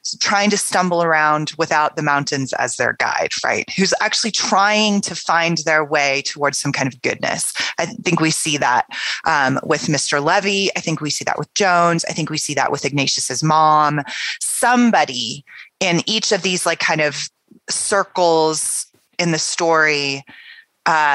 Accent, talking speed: American, 170 wpm